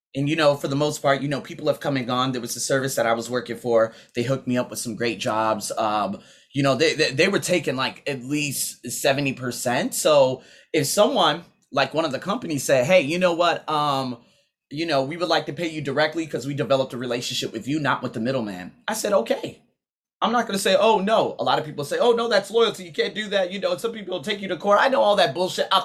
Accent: American